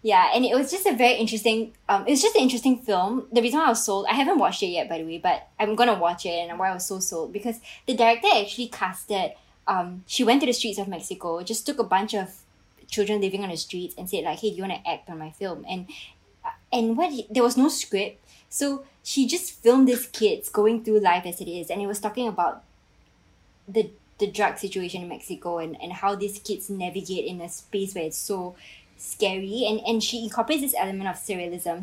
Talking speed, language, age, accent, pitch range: 240 wpm, English, 20-39, Malaysian, 190-240 Hz